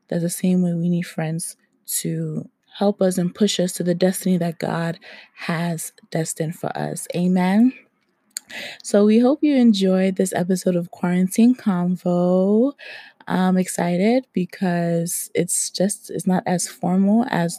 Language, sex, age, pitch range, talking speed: English, female, 20-39, 170-200 Hz, 145 wpm